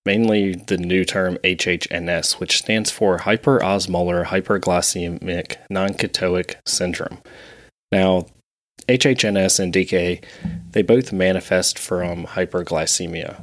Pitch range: 90-110 Hz